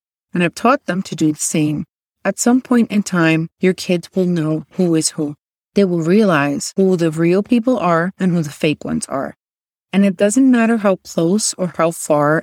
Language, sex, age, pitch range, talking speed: English, female, 30-49, 160-195 Hz, 210 wpm